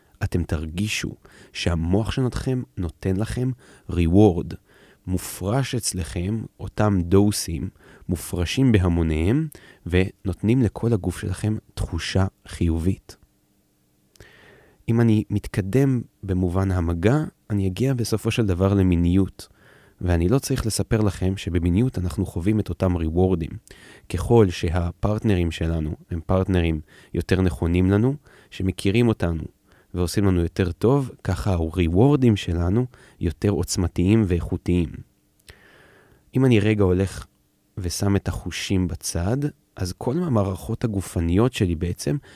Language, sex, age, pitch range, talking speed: Hebrew, male, 30-49, 90-110 Hz, 110 wpm